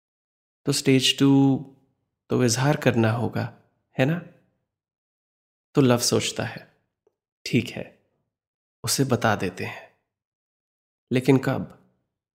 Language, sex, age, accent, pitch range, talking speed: Hindi, male, 20-39, native, 110-130 Hz, 100 wpm